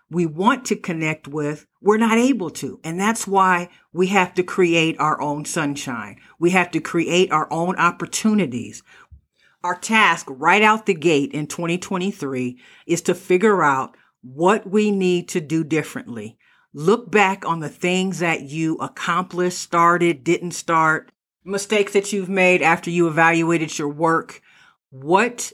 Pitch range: 155-190 Hz